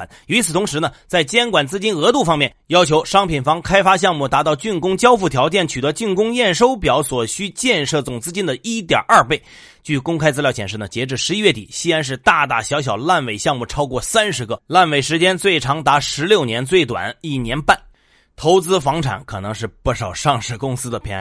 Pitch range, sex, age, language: 130-185 Hz, male, 30-49, Chinese